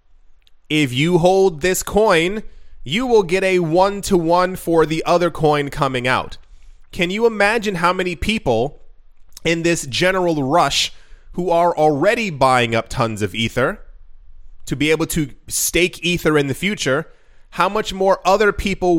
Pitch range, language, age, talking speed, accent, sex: 130-170 Hz, English, 20-39, 150 wpm, American, male